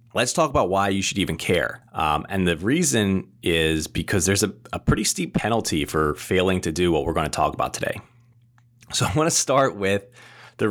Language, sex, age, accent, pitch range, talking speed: English, male, 30-49, American, 80-120 Hz, 215 wpm